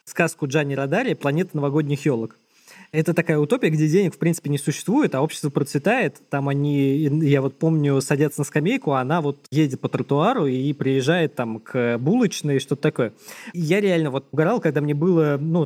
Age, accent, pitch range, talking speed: 20-39, native, 140-165 Hz, 180 wpm